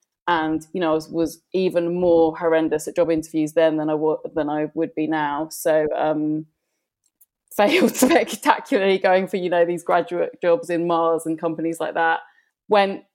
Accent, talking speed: British, 180 wpm